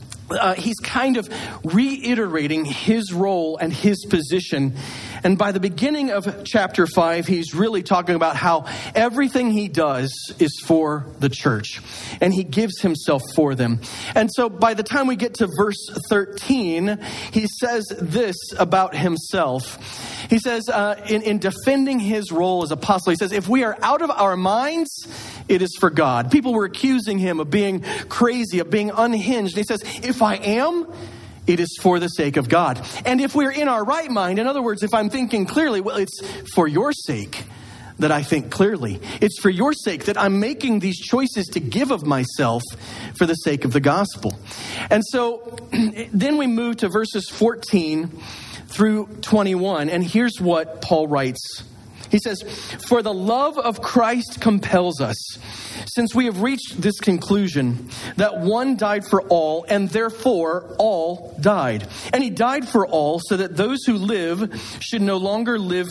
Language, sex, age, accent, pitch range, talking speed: English, male, 40-59, American, 155-225 Hz, 175 wpm